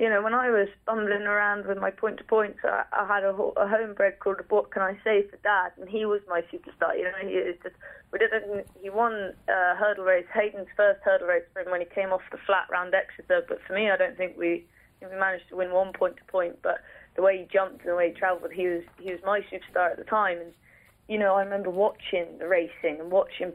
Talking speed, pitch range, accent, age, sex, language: 250 wpm, 180-210 Hz, British, 20-39, female, English